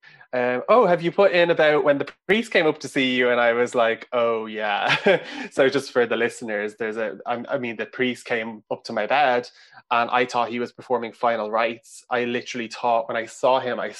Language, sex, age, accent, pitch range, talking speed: English, male, 20-39, Irish, 115-145 Hz, 230 wpm